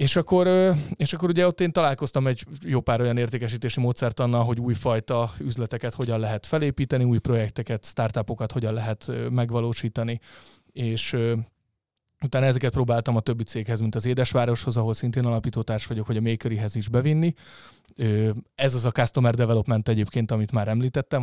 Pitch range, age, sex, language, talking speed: 115-130 Hz, 30-49, male, Hungarian, 160 wpm